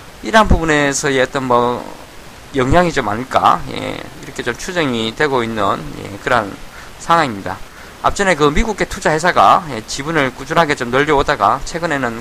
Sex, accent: male, native